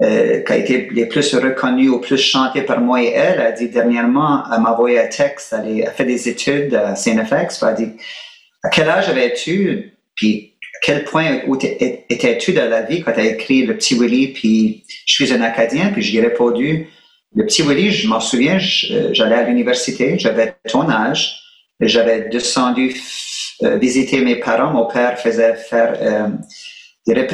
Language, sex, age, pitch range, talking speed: French, male, 30-49, 120-185 Hz, 200 wpm